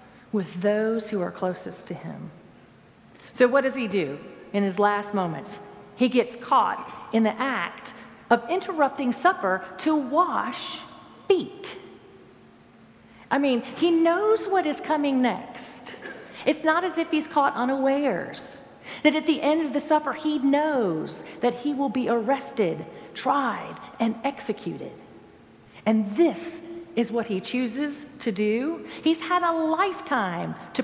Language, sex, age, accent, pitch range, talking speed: English, female, 40-59, American, 215-300 Hz, 145 wpm